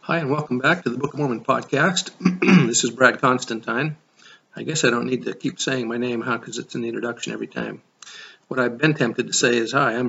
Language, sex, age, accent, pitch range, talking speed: English, male, 50-69, American, 115-135 Hz, 245 wpm